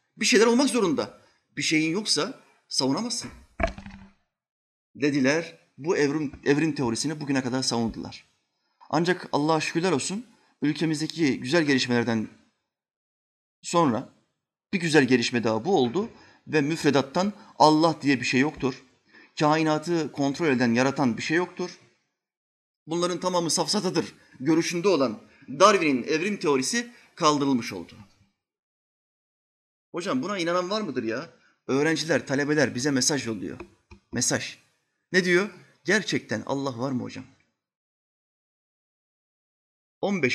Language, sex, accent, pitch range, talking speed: Turkish, male, native, 125-170 Hz, 110 wpm